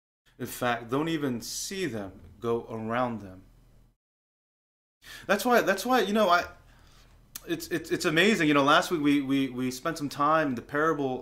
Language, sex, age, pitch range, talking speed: English, male, 20-39, 115-145 Hz, 175 wpm